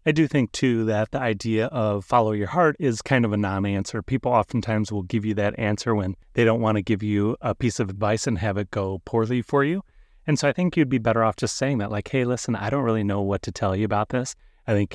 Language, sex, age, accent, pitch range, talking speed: English, male, 30-49, American, 105-130 Hz, 270 wpm